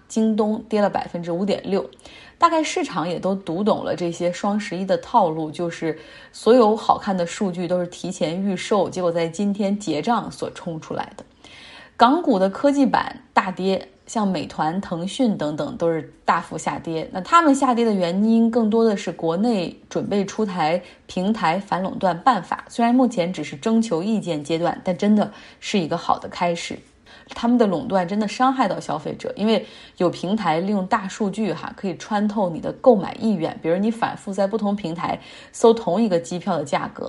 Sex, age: female, 20-39